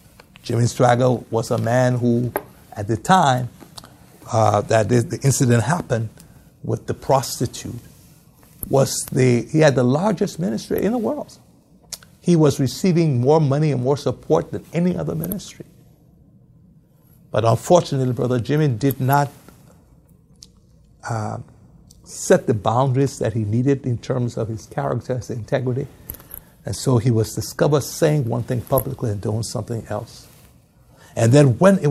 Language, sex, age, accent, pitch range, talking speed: English, male, 60-79, American, 120-150 Hz, 145 wpm